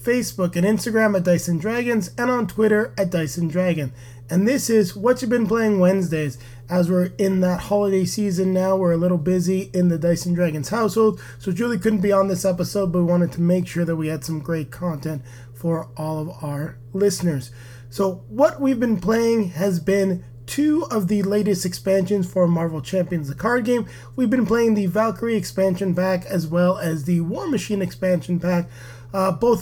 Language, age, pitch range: English, 30-49, 160-200 Hz